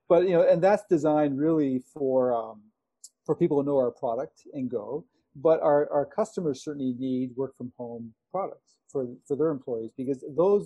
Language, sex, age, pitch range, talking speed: English, male, 40-59, 125-155 Hz, 185 wpm